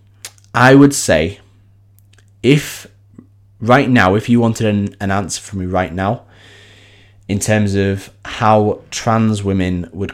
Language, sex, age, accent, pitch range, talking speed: English, male, 20-39, British, 95-110 Hz, 130 wpm